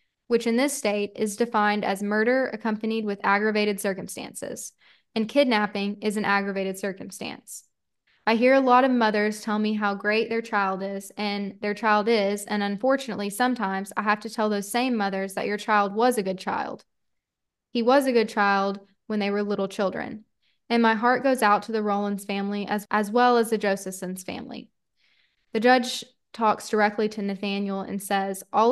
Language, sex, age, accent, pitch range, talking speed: English, female, 10-29, American, 200-225 Hz, 180 wpm